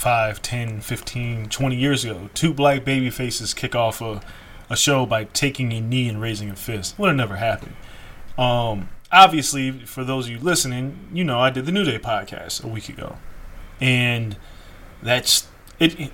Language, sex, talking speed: English, male, 180 wpm